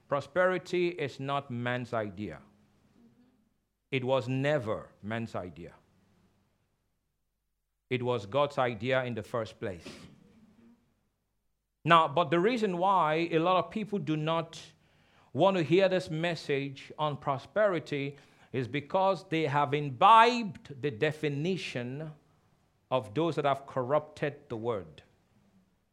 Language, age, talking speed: English, 50-69, 115 wpm